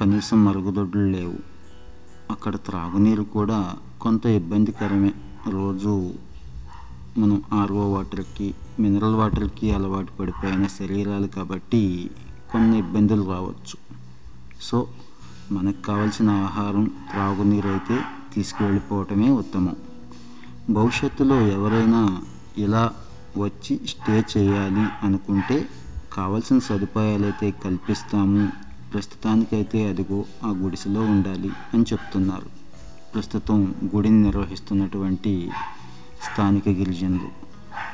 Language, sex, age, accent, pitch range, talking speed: Telugu, male, 30-49, native, 95-105 Hz, 80 wpm